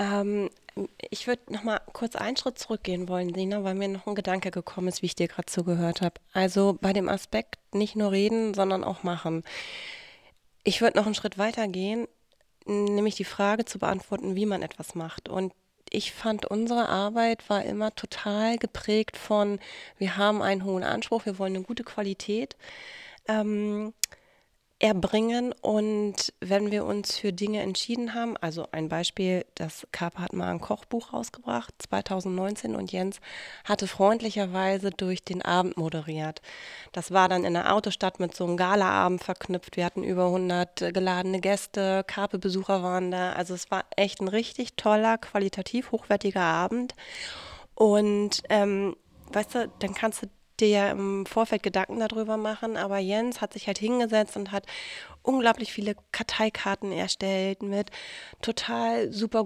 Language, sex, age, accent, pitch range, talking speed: German, female, 30-49, German, 185-215 Hz, 155 wpm